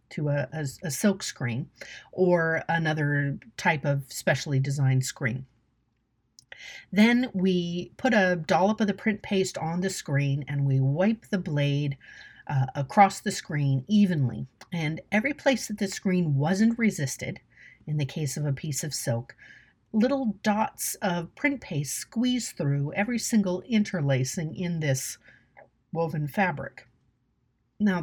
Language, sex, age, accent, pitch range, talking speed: English, female, 50-69, American, 140-200 Hz, 140 wpm